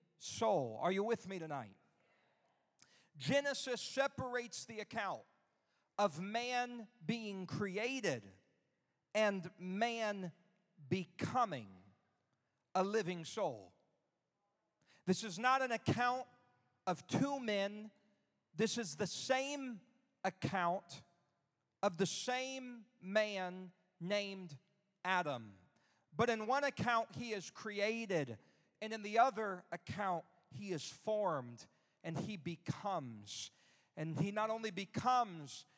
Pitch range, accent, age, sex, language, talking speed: 165-225 Hz, American, 40-59, male, English, 100 wpm